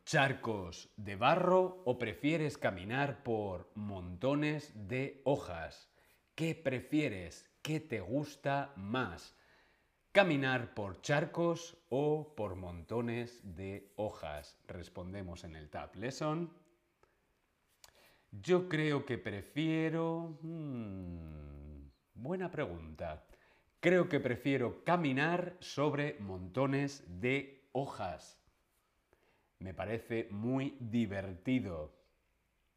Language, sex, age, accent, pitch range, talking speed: Spanish, male, 40-59, Spanish, 100-150 Hz, 85 wpm